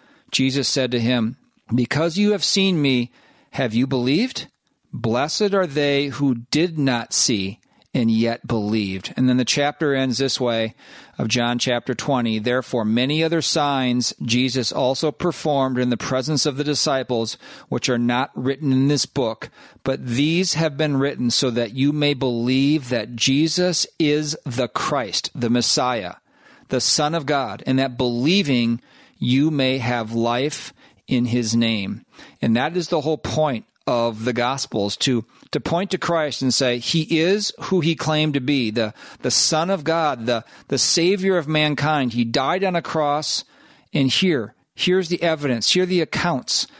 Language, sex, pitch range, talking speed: English, male, 120-150 Hz, 170 wpm